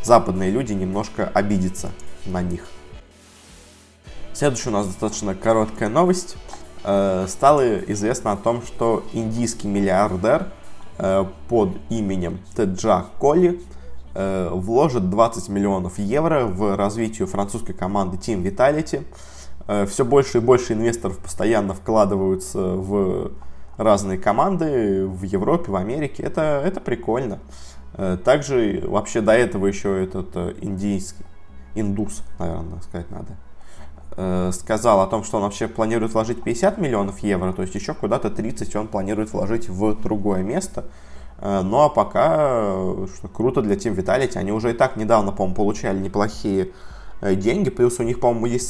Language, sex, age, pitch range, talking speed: Russian, male, 20-39, 95-110 Hz, 130 wpm